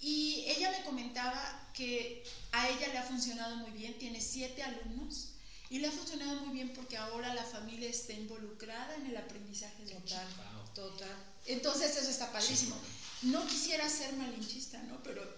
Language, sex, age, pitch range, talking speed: Spanish, female, 40-59, 225-270 Hz, 165 wpm